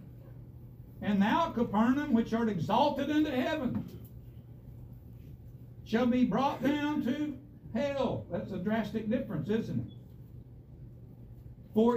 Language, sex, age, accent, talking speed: English, male, 60-79, American, 105 wpm